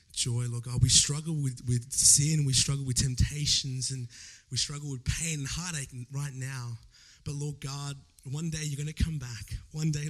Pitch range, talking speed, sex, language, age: 120-145 Hz, 195 wpm, male, English, 20-39